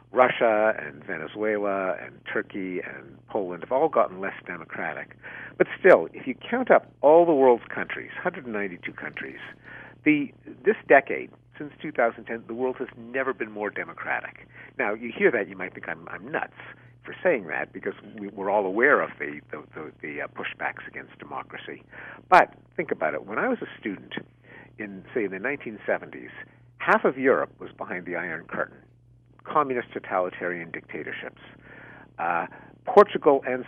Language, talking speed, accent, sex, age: English, 160 wpm, American, male, 50-69